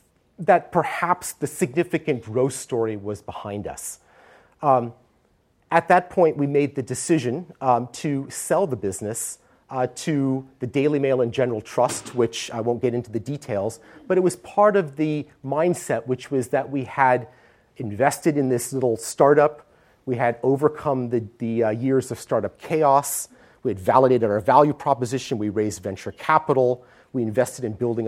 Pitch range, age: 115-145 Hz, 30-49